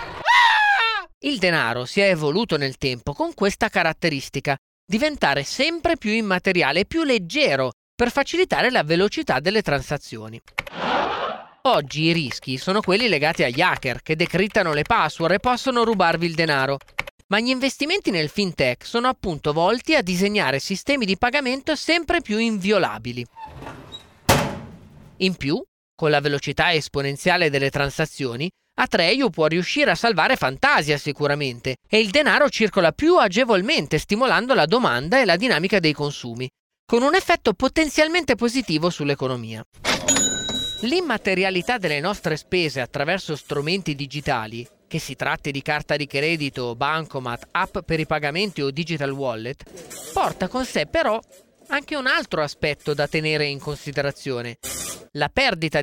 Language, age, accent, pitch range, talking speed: Italian, 30-49, native, 145-230 Hz, 140 wpm